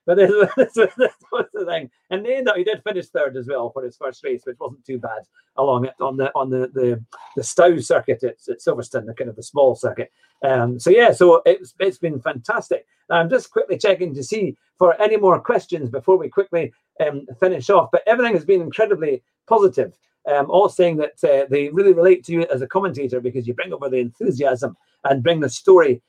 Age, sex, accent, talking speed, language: 50-69, male, British, 220 wpm, English